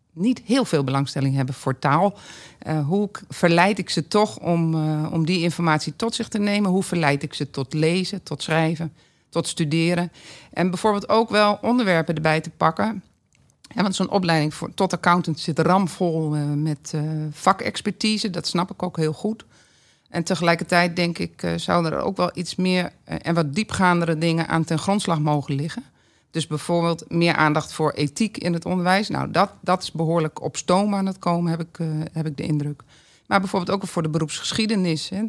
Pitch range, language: 160-195 Hz, Dutch